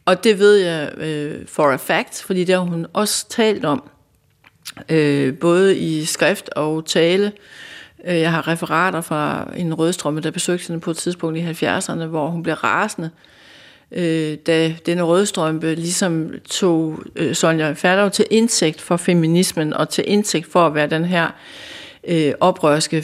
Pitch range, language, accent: 160-195 Hz, Danish, native